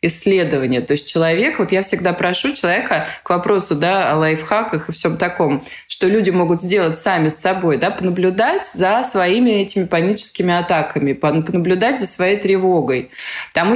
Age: 20-39